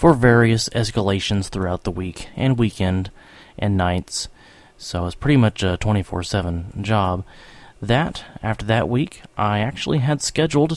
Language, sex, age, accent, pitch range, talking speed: English, male, 30-49, American, 100-135 Hz, 145 wpm